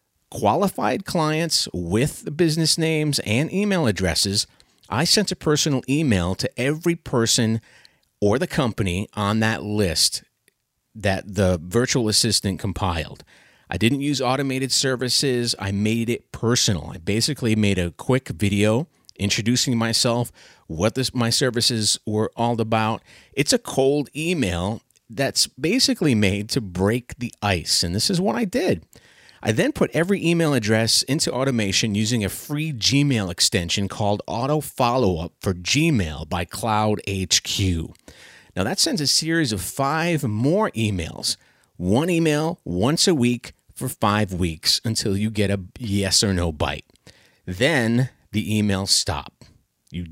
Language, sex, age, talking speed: English, male, 30-49, 140 wpm